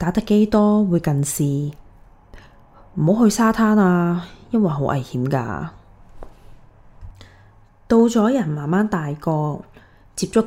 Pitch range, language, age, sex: 135-185 Hz, Chinese, 20-39, female